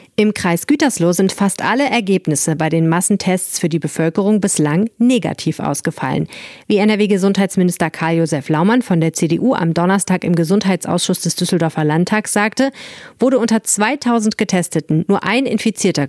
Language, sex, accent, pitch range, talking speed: German, female, German, 165-215 Hz, 140 wpm